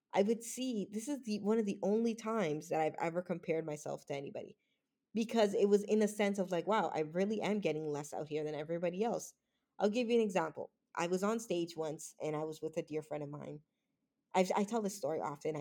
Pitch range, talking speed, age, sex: 160-230 Hz, 240 wpm, 20-39, female